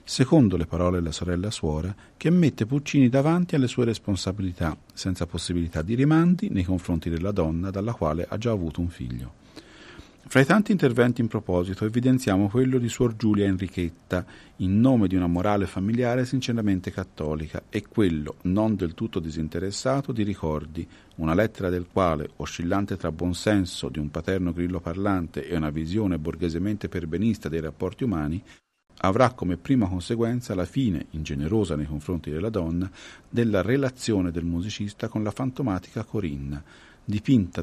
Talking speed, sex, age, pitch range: 155 wpm, male, 50-69, 85-115 Hz